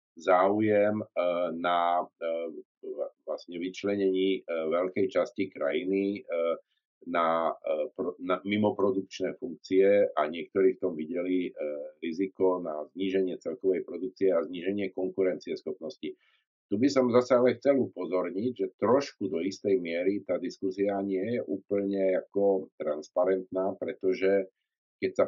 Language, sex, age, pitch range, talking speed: Slovak, male, 50-69, 90-105 Hz, 115 wpm